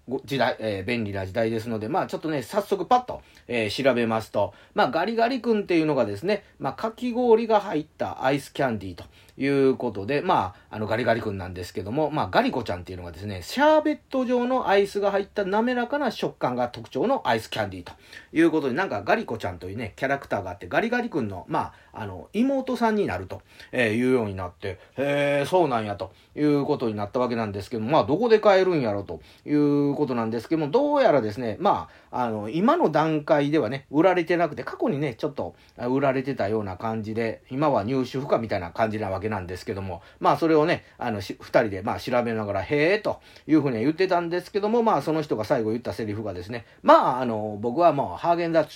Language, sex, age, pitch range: Japanese, male, 40-59, 110-165 Hz